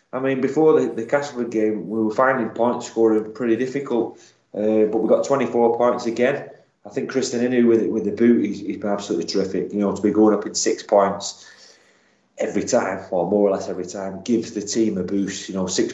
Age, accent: 30-49, British